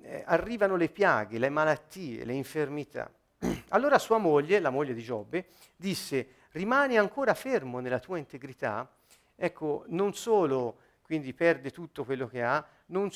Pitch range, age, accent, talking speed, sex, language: 125-190 Hz, 50-69, native, 140 wpm, male, Italian